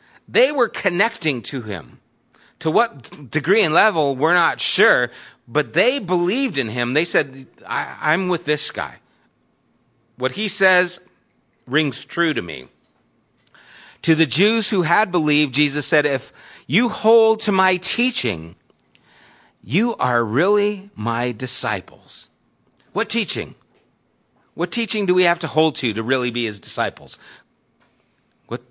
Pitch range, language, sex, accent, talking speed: 145-195 Hz, English, male, American, 140 wpm